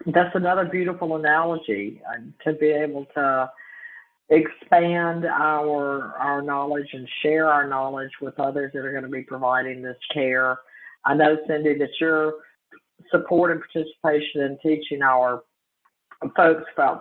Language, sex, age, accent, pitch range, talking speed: English, female, 50-69, American, 130-155 Hz, 140 wpm